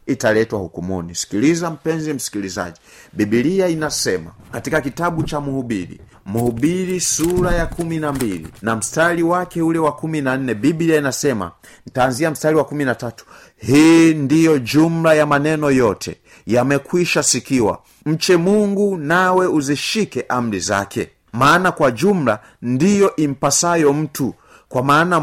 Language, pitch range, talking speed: Swahili, 115-175 Hz, 115 wpm